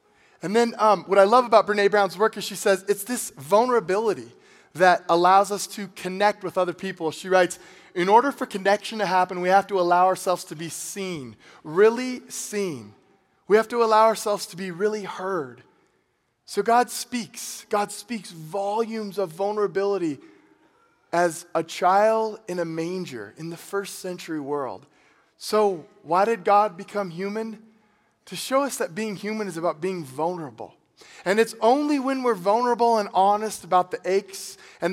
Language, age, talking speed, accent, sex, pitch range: English, 20-39, 170 wpm, American, male, 180-210 Hz